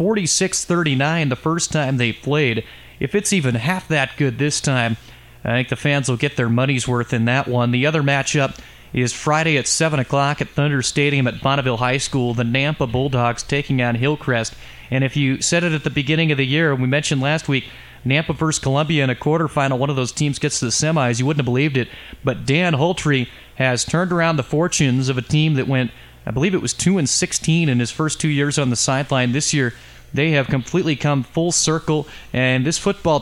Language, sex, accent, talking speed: English, male, American, 220 wpm